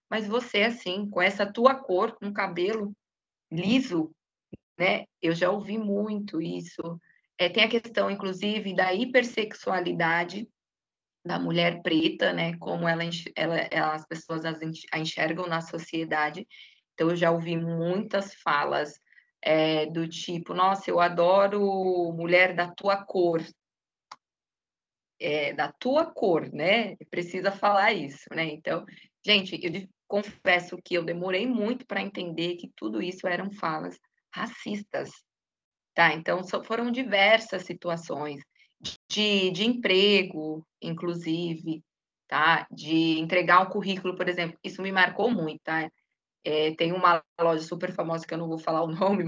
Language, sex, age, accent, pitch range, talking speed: Portuguese, female, 20-39, Brazilian, 165-205 Hz, 125 wpm